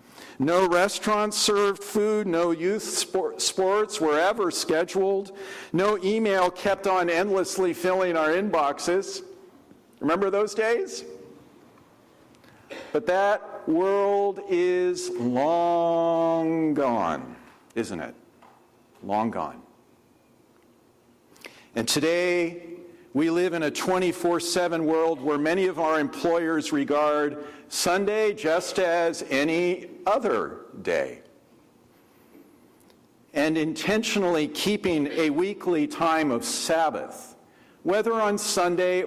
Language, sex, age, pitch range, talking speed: English, male, 50-69, 155-200 Hz, 95 wpm